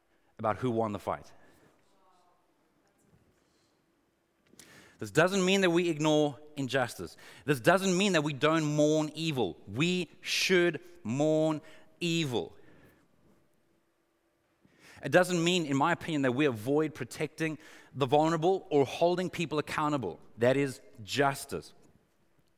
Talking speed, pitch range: 115 wpm, 125-160 Hz